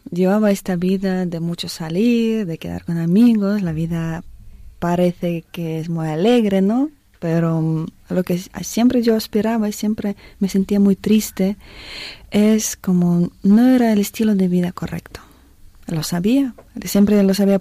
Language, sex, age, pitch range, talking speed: Spanish, female, 20-39, 170-210 Hz, 150 wpm